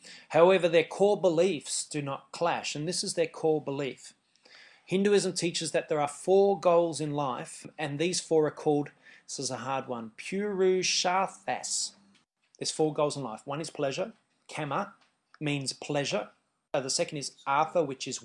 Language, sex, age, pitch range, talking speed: English, male, 30-49, 135-175 Hz, 165 wpm